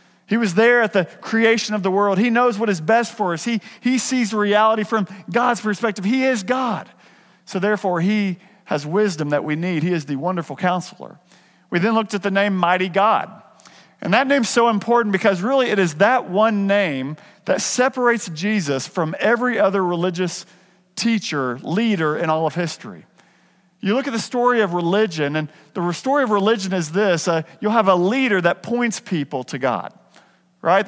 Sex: male